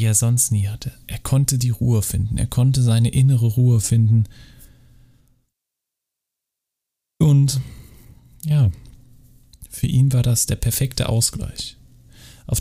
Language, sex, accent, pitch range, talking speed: German, male, German, 100-120 Hz, 120 wpm